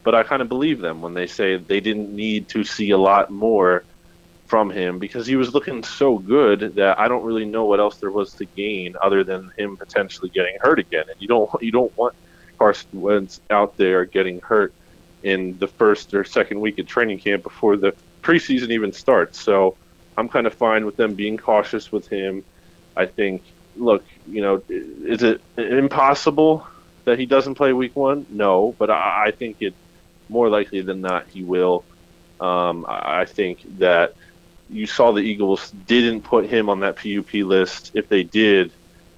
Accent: American